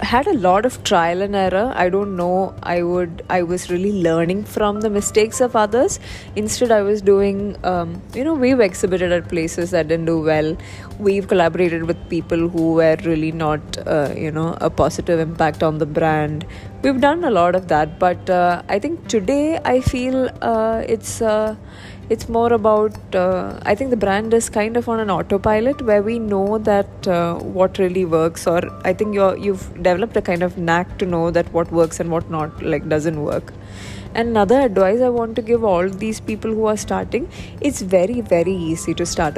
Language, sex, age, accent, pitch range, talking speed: English, female, 20-39, Indian, 165-215 Hz, 200 wpm